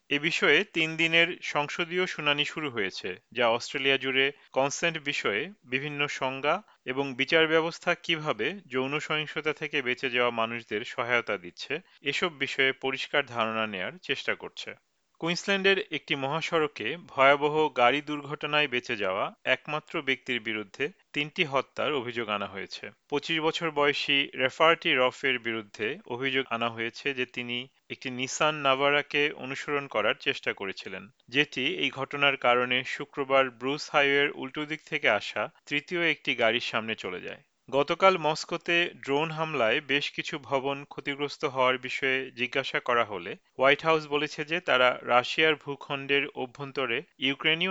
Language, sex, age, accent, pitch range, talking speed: Bengali, male, 40-59, native, 130-150 Hz, 120 wpm